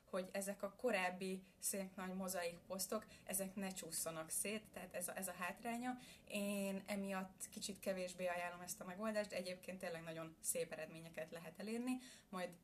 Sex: female